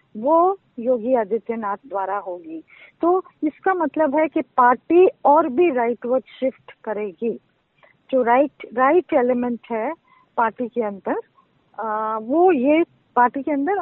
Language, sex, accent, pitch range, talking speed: Hindi, female, native, 245-310 Hz, 130 wpm